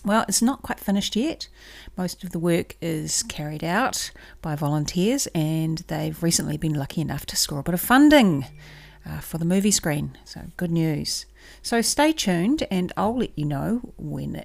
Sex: female